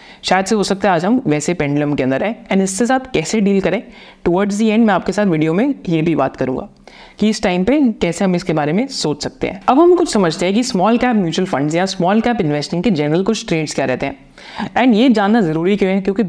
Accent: native